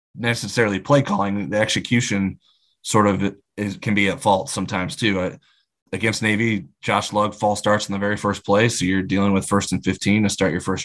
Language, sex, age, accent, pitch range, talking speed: English, male, 20-39, American, 100-115 Hz, 205 wpm